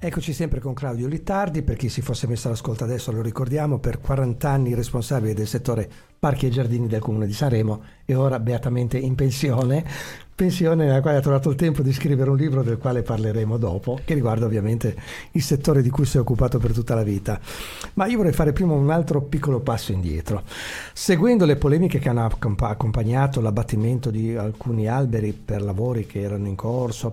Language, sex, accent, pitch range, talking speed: Italian, male, native, 110-140 Hz, 190 wpm